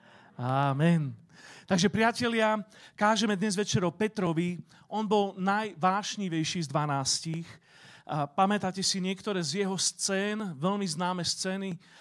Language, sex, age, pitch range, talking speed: Slovak, male, 40-59, 165-200 Hz, 105 wpm